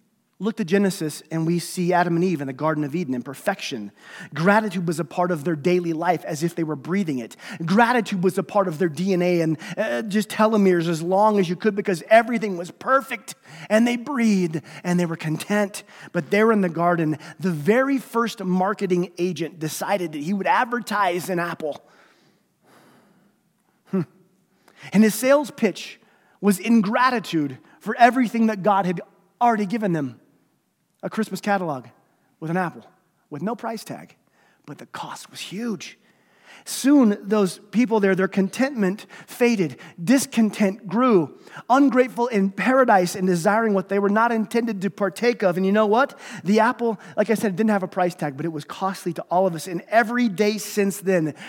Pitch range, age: 175-215 Hz, 30-49